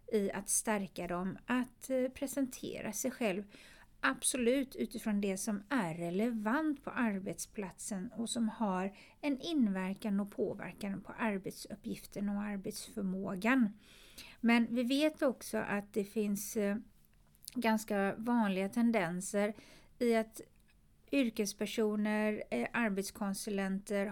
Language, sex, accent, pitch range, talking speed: English, female, Swedish, 200-235 Hz, 100 wpm